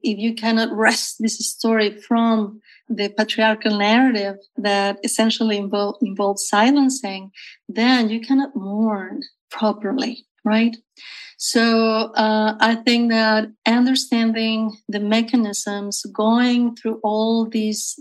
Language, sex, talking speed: English, female, 105 wpm